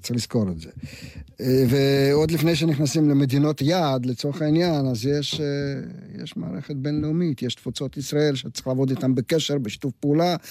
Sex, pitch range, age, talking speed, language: male, 120-150 Hz, 50-69, 145 wpm, Hebrew